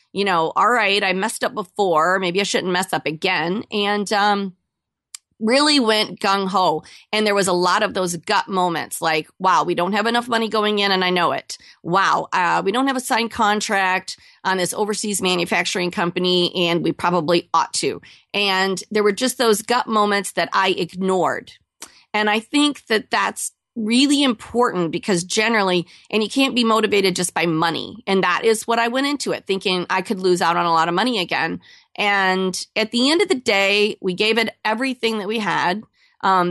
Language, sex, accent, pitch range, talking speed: English, female, American, 185-230 Hz, 195 wpm